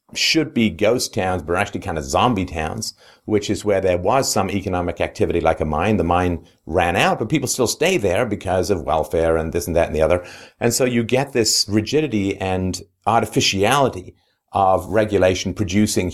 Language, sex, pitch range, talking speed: English, male, 85-110 Hz, 195 wpm